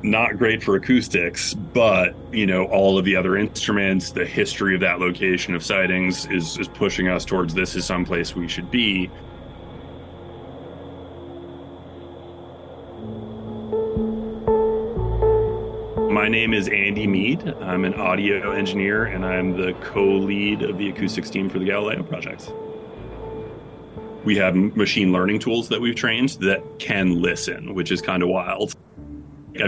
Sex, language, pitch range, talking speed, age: male, English, 90-105 Hz, 140 wpm, 30-49